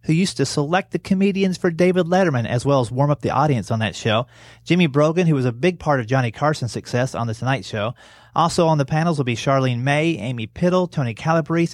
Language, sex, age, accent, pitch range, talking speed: English, male, 30-49, American, 120-165 Hz, 235 wpm